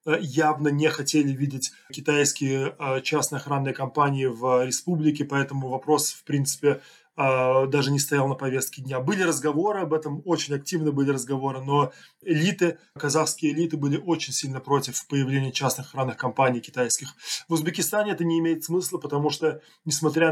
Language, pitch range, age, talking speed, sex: Russian, 140-155 Hz, 20-39, 150 wpm, male